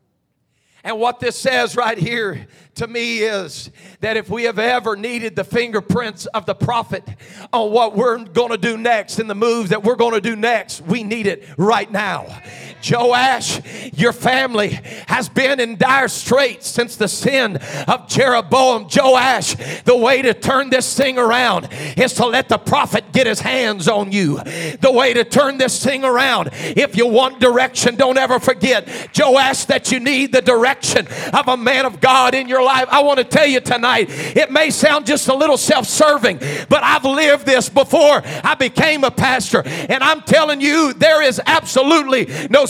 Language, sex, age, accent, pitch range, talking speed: English, male, 40-59, American, 230-305 Hz, 185 wpm